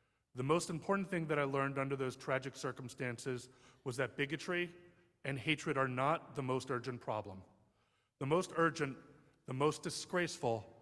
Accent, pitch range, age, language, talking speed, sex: American, 125-155 Hz, 30-49, English, 155 wpm, male